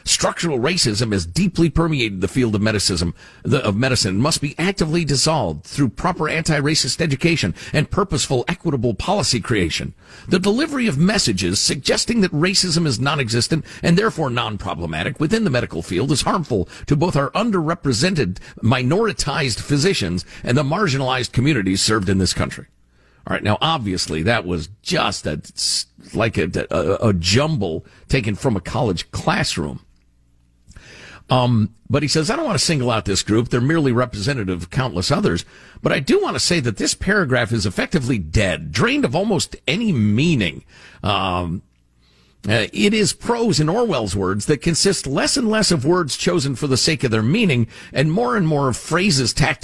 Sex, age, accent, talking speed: male, 50-69, American, 170 wpm